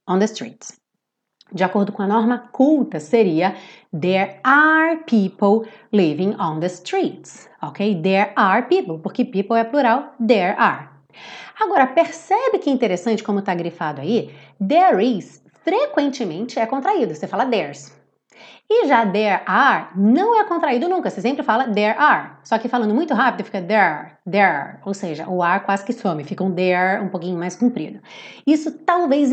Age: 30-49